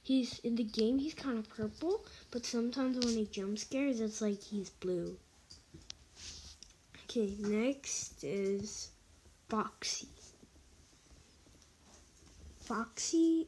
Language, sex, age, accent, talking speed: English, female, 10-29, American, 100 wpm